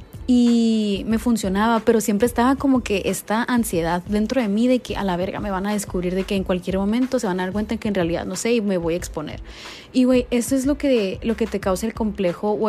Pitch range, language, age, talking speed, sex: 200-255 Hz, Spanish, 20-39, 265 wpm, female